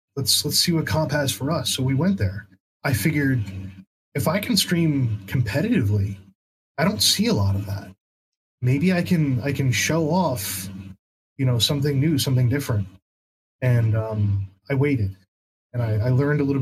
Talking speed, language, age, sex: 175 wpm, English, 20-39, male